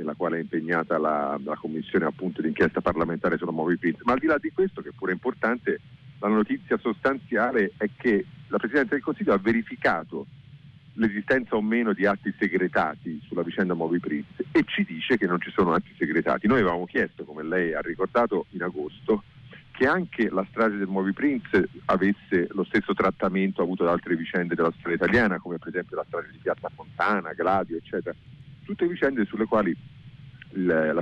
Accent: native